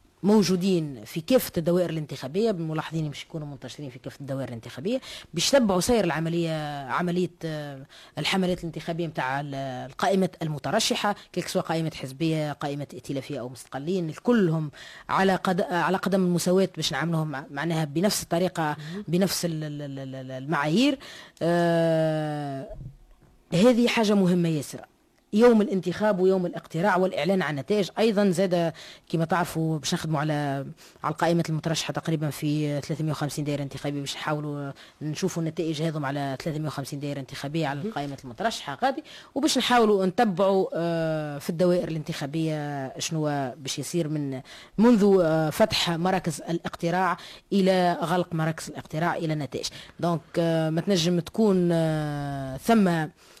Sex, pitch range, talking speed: female, 145-185 Hz, 120 wpm